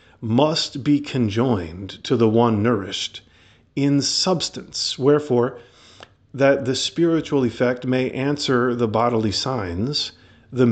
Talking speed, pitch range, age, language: 110 wpm, 105-130 Hz, 40-59, English